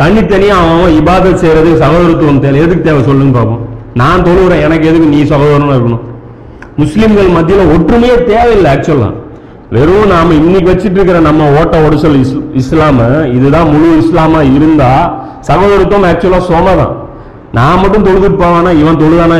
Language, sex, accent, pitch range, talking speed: Tamil, male, native, 130-170 Hz, 140 wpm